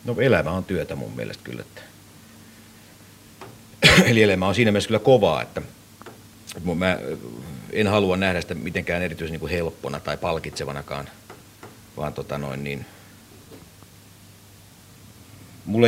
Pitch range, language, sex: 85-105 Hz, Finnish, male